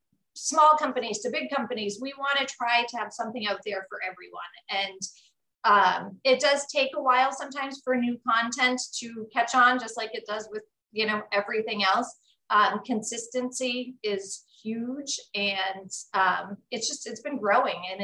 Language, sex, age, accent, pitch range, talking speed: English, female, 30-49, American, 205-255 Hz, 170 wpm